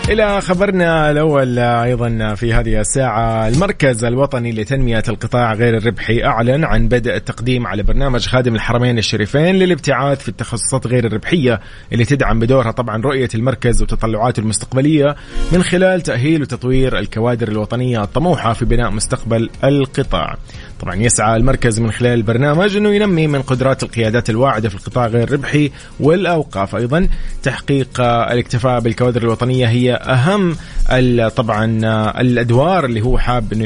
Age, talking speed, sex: 30-49, 135 wpm, male